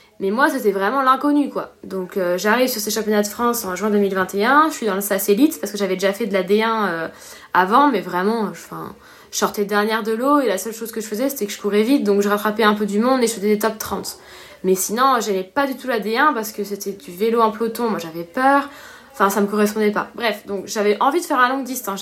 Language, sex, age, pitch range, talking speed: French, female, 20-39, 200-250 Hz, 265 wpm